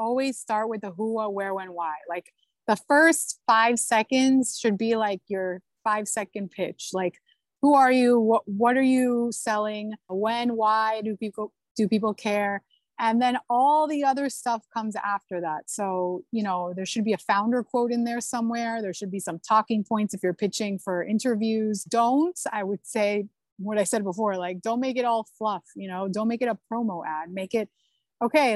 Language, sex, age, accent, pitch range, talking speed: English, female, 30-49, American, 200-240 Hz, 200 wpm